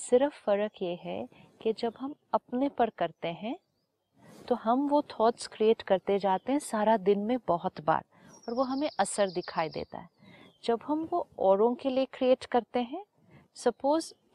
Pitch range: 185-270 Hz